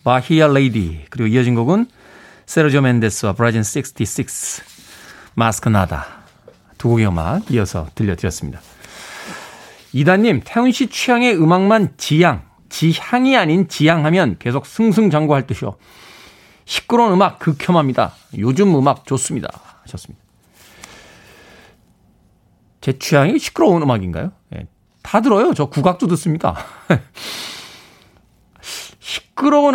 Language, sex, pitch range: Korean, male, 115-190 Hz